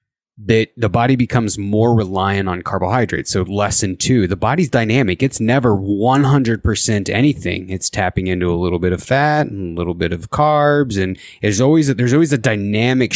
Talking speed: 190 wpm